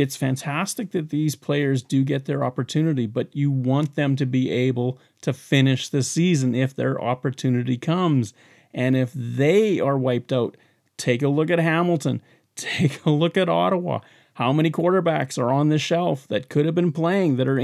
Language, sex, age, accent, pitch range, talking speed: English, male, 30-49, American, 130-165 Hz, 185 wpm